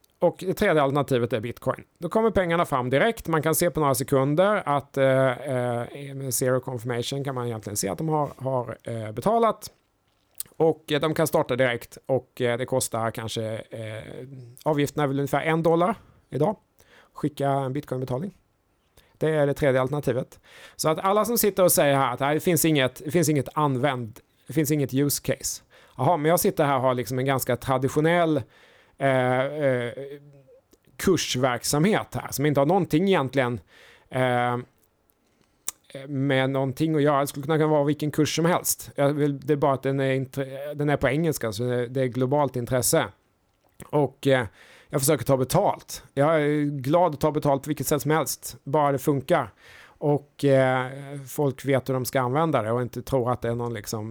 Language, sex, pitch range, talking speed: Swedish, male, 125-150 Hz, 185 wpm